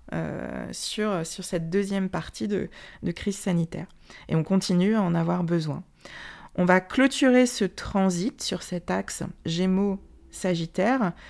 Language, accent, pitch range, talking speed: French, French, 175-210 Hz, 140 wpm